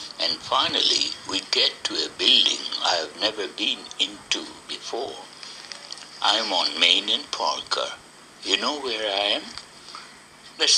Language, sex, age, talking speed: English, male, 60-79, 140 wpm